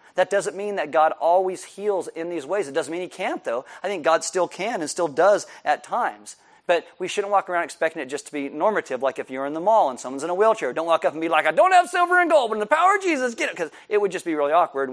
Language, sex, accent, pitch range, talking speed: English, male, American, 140-190 Hz, 300 wpm